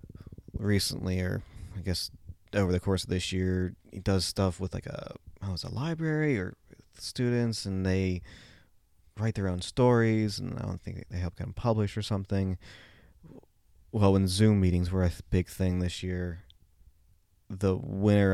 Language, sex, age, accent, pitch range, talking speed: English, male, 20-39, American, 90-100 Hz, 165 wpm